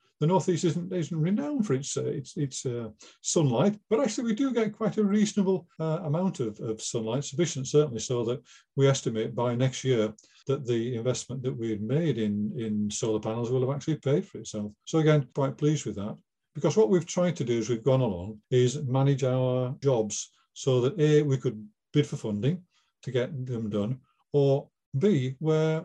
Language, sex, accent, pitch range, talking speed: English, male, British, 115-150 Hz, 200 wpm